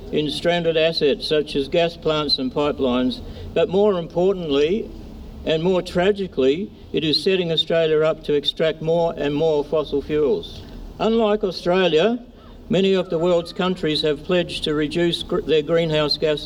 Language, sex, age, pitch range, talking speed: English, male, 60-79, 145-175 Hz, 150 wpm